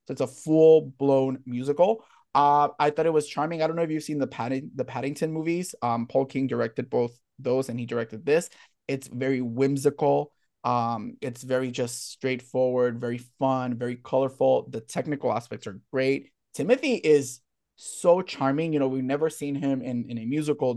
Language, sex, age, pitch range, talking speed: English, male, 20-39, 125-150 Hz, 180 wpm